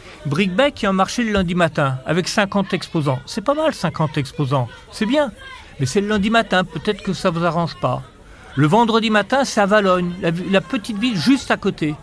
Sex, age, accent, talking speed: male, 40-59, French, 205 wpm